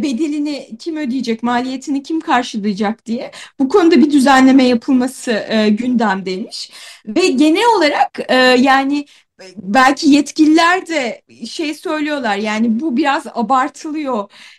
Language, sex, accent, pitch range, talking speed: Turkish, female, native, 235-300 Hz, 115 wpm